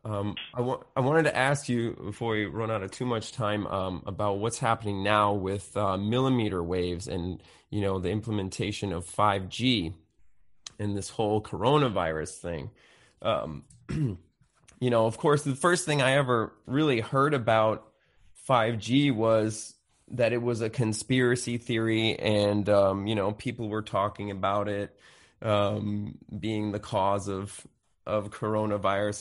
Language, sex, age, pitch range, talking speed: English, male, 20-39, 105-125 Hz, 150 wpm